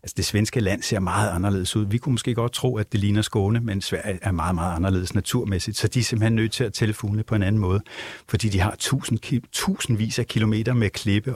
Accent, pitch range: native, 100-125 Hz